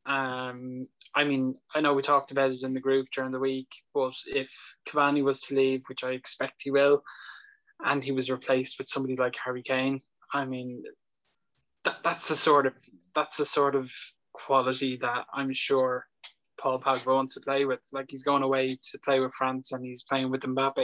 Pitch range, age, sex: 130-140 Hz, 10-29, male